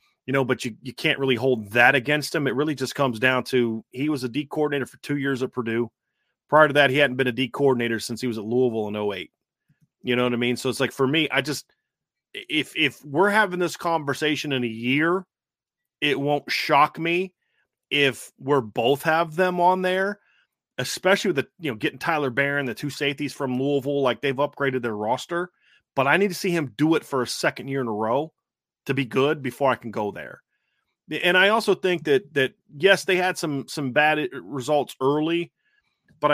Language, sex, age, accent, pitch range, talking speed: English, male, 30-49, American, 125-155 Hz, 215 wpm